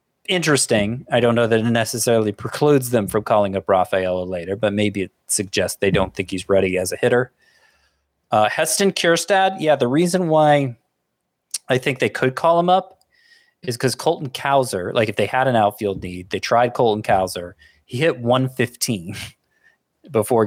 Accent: American